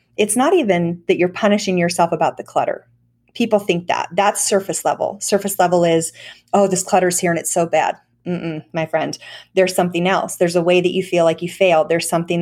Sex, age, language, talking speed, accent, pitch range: female, 30-49, English, 215 wpm, American, 170-205 Hz